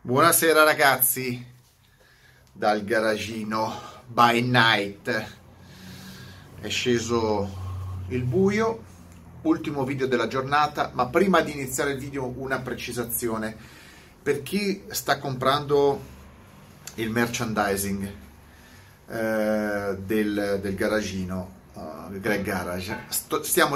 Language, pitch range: Italian, 100-140 Hz